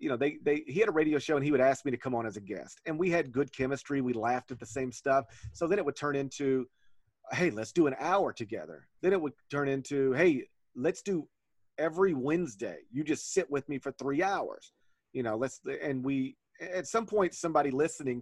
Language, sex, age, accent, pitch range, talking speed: English, male, 40-59, American, 125-155 Hz, 235 wpm